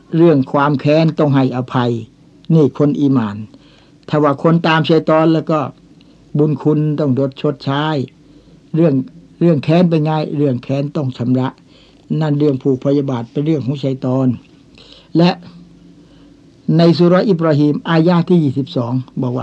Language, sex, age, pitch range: Thai, male, 60-79, 140-165 Hz